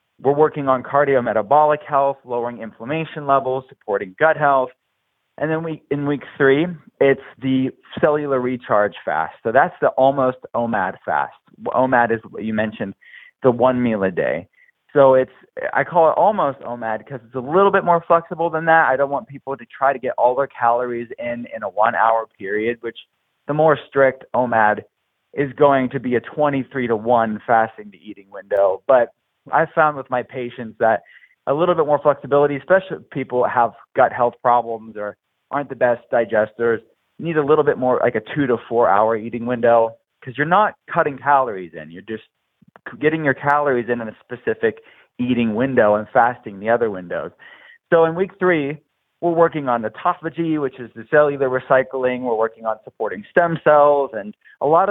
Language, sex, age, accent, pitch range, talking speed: English, male, 30-49, American, 120-150 Hz, 180 wpm